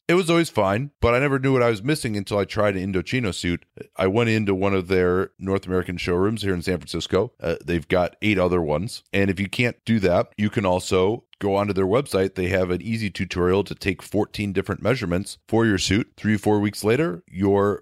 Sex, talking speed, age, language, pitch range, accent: male, 230 wpm, 30-49, English, 95-120 Hz, American